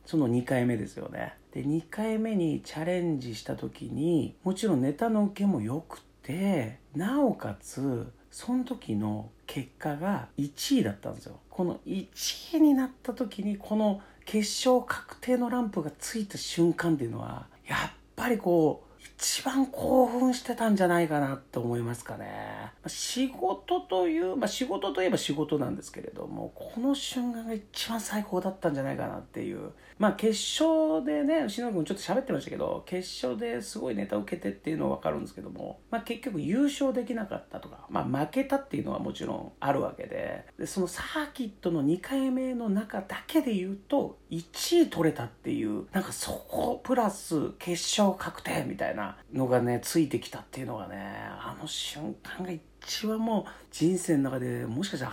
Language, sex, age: Japanese, male, 50-69